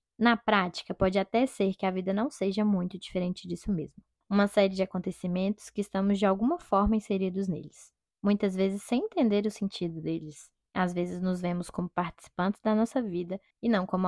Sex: female